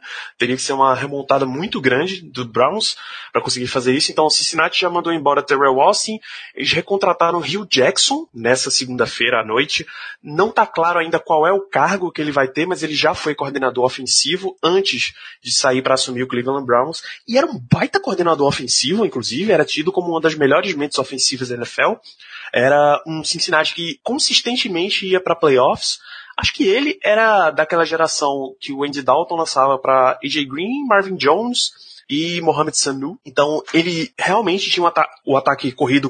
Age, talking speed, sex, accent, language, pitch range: 20-39, 180 wpm, male, Brazilian, Portuguese, 135-190 Hz